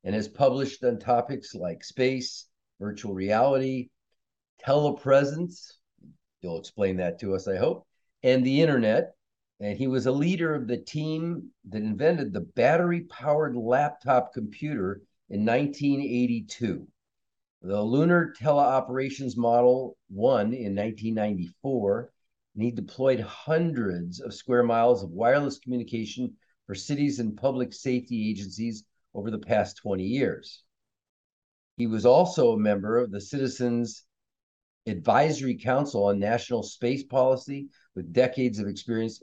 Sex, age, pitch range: male, 50-69, 105-130 Hz